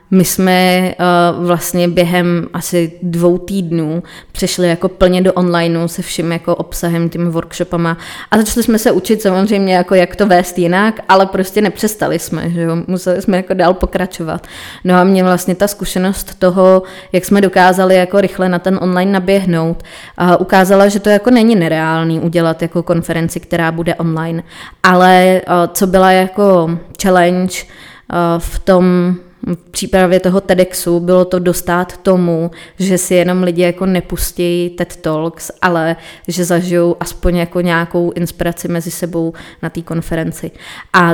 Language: Czech